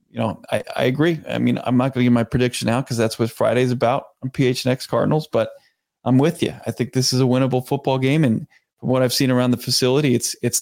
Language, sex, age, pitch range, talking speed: English, male, 30-49, 115-130 Hz, 255 wpm